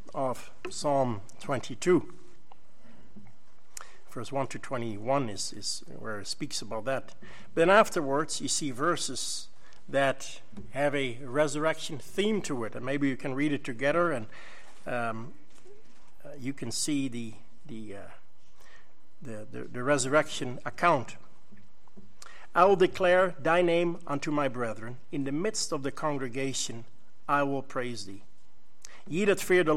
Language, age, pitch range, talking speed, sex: English, 60-79, 125-165 Hz, 135 wpm, male